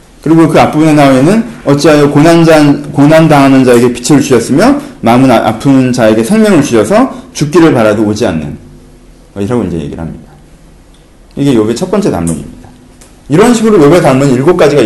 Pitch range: 120-200 Hz